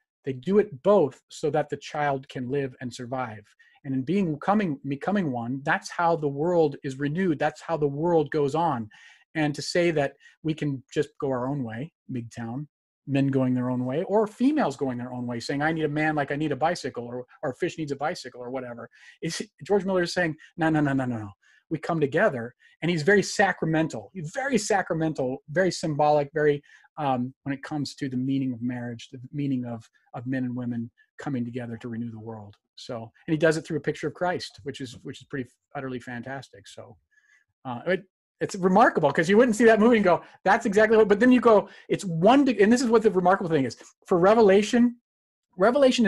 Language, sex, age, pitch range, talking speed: English, male, 30-49, 130-185 Hz, 215 wpm